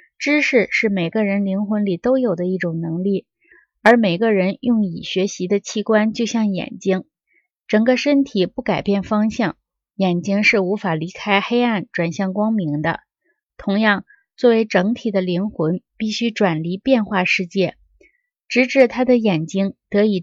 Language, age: Chinese, 20-39